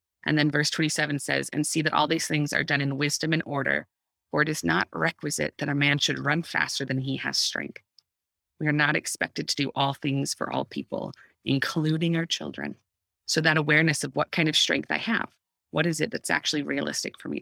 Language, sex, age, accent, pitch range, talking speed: English, female, 30-49, American, 130-155 Hz, 220 wpm